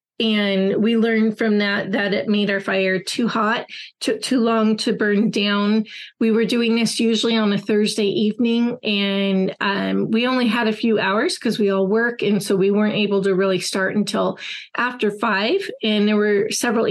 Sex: female